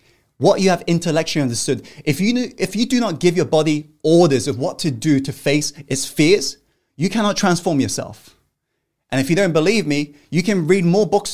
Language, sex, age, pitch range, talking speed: English, male, 20-39, 140-190 Hz, 205 wpm